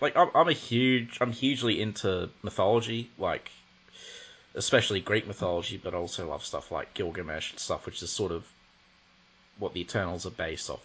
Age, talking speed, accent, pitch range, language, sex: 20-39, 170 wpm, Australian, 95-125 Hz, English, male